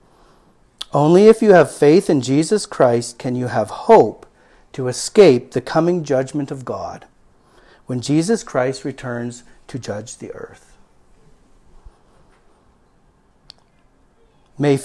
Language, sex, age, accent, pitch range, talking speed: English, male, 40-59, American, 125-175 Hz, 115 wpm